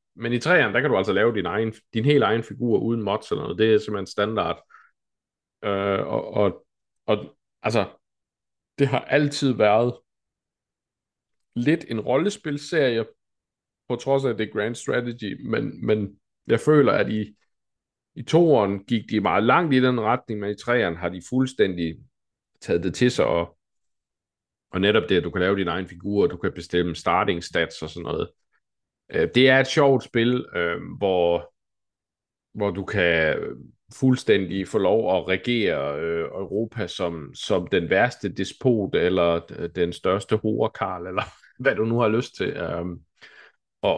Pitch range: 95-125 Hz